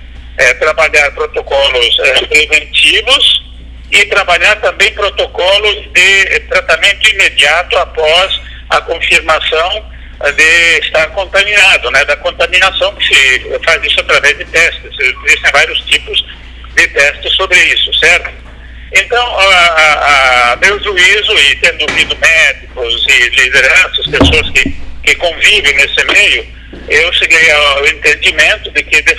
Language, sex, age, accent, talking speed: Portuguese, male, 60-79, Brazilian, 125 wpm